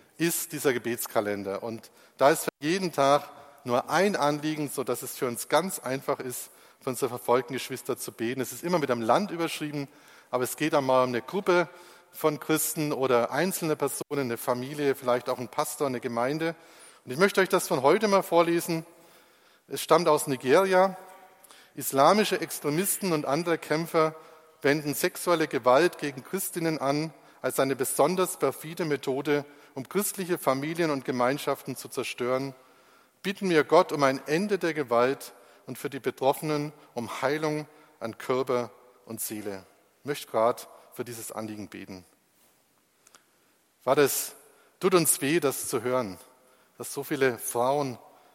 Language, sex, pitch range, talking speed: German, male, 125-160 Hz, 155 wpm